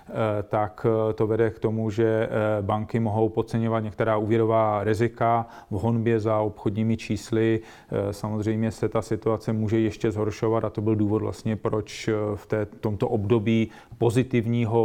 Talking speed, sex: 135 wpm, male